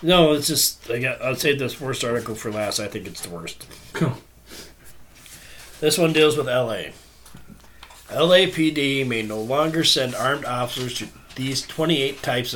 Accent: American